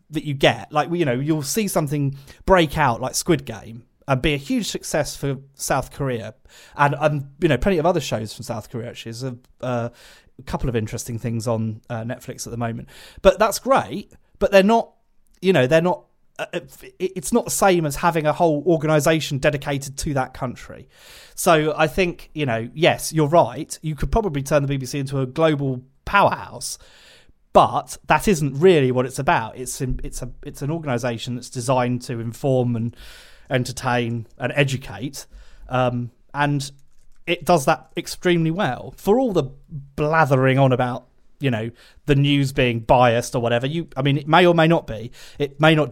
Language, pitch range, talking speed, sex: English, 125-160 Hz, 185 wpm, male